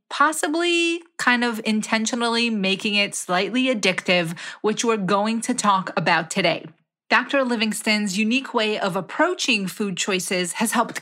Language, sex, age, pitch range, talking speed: English, female, 30-49, 195-255 Hz, 135 wpm